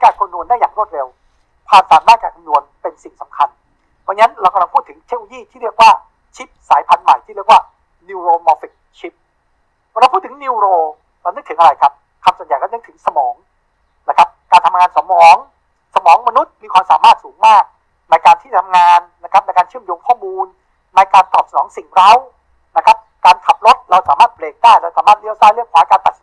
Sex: male